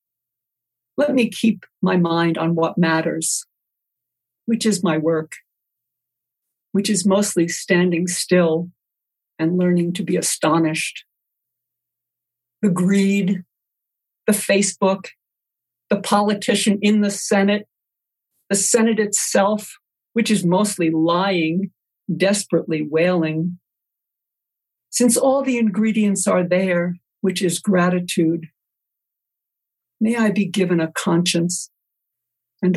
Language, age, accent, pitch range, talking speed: English, 60-79, American, 165-195 Hz, 105 wpm